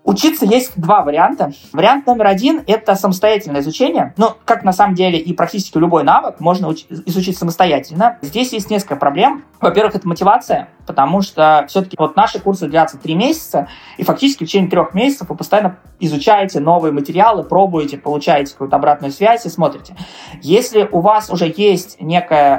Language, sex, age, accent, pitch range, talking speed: Russian, male, 20-39, native, 155-195 Hz, 170 wpm